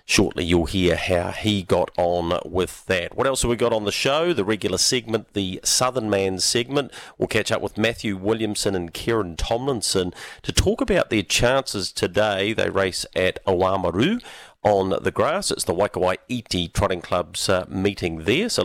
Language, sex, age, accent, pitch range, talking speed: English, male, 40-59, Australian, 90-110 Hz, 180 wpm